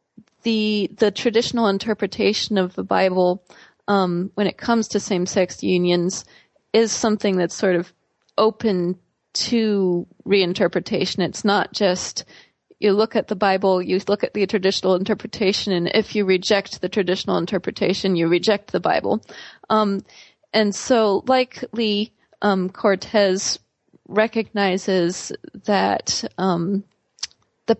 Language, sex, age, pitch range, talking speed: English, female, 30-49, 185-210 Hz, 125 wpm